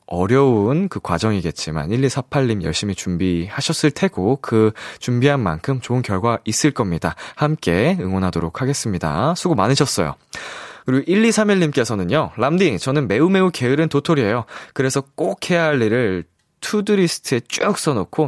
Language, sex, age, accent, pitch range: Korean, male, 20-39, native, 105-160 Hz